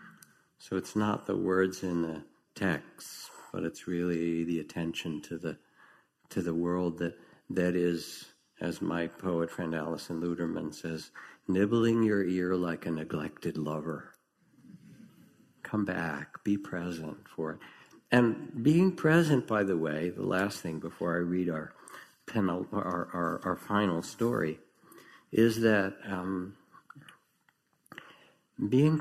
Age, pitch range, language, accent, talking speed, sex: 60-79, 85-105 Hz, English, American, 130 wpm, male